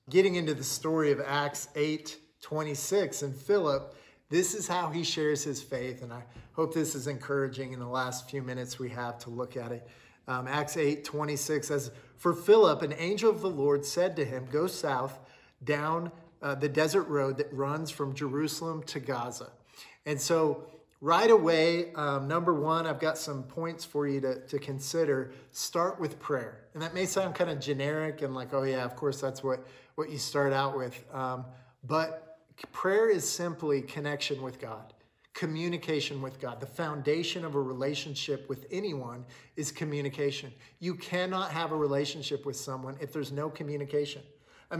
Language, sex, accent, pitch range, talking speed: English, male, American, 135-160 Hz, 180 wpm